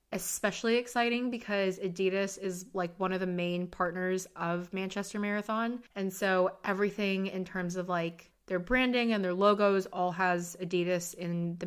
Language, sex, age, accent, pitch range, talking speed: English, female, 20-39, American, 175-205 Hz, 160 wpm